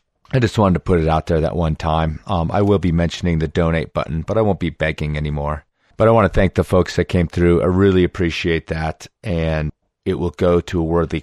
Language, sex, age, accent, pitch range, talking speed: English, male, 30-49, American, 85-105 Hz, 245 wpm